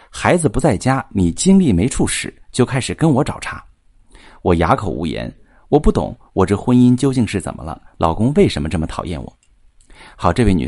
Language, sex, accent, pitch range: Chinese, male, native, 90-135 Hz